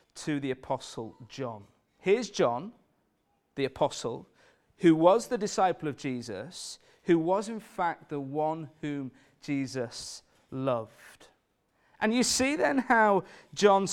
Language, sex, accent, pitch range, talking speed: English, male, British, 145-195 Hz, 125 wpm